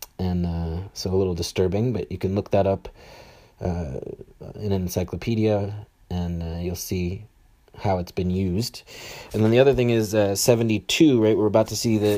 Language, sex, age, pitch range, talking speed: English, male, 30-49, 90-115 Hz, 185 wpm